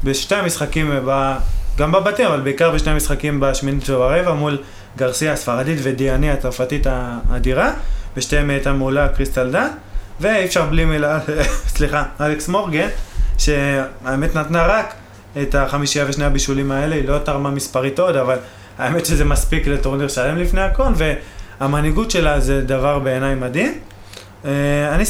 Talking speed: 135 wpm